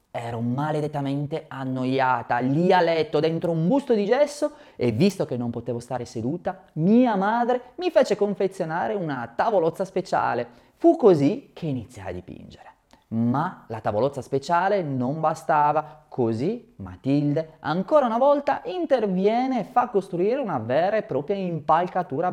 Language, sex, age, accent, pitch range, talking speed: Italian, male, 30-49, native, 130-195 Hz, 140 wpm